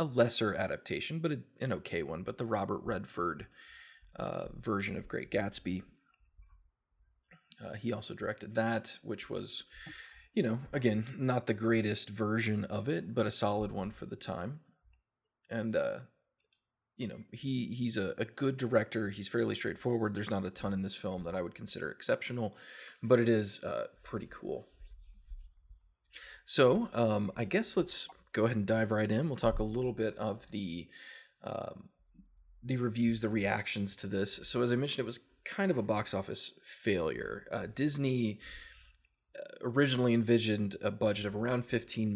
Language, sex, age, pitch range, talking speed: English, male, 20-39, 100-120 Hz, 165 wpm